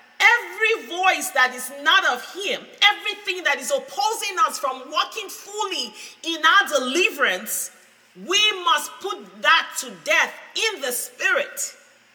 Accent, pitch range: Nigerian, 300-410 Hz